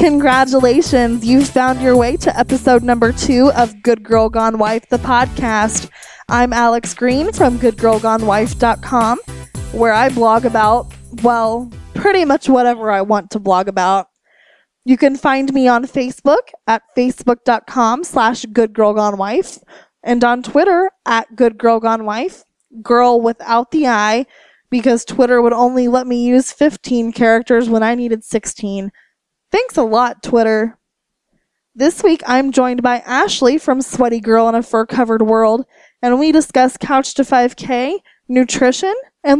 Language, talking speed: English, 140 wpm